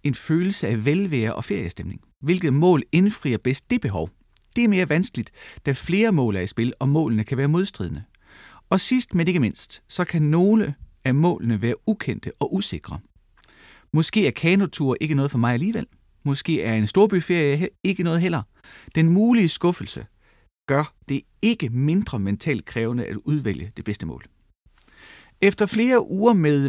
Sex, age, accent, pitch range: male, 30-49, native, 115-180 Hz